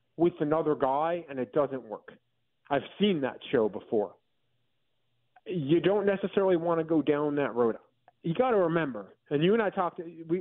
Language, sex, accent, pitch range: English, male, American, 145-185 Hz